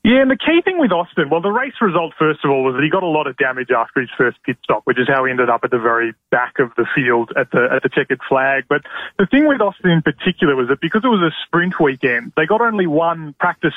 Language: English